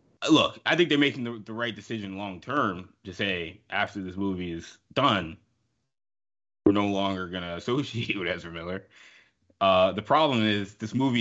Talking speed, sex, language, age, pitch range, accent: 175 wpm, male, English, 20-39, 100-125 Hz, American